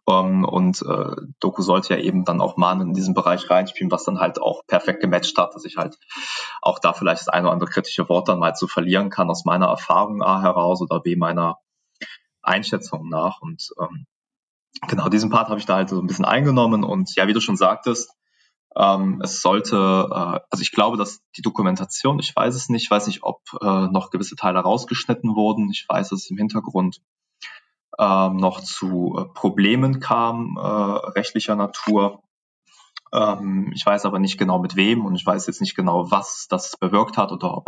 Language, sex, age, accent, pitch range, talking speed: German, male, 20-39, German, 95-110 Hz, 200 wpm